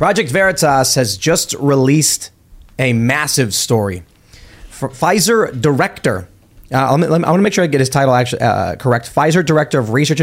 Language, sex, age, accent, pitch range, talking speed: English, male, 30-49, American, 125-165 Hz, 160 wpm